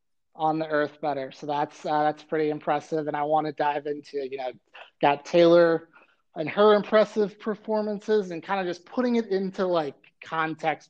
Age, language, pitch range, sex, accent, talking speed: 30-49, English, 145-175 Hz, male, American, 180 wpm